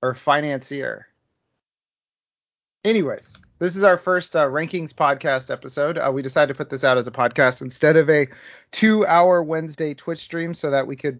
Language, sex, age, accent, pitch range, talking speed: English, male, 30-49, American, 130-165 Hz, 170 wpm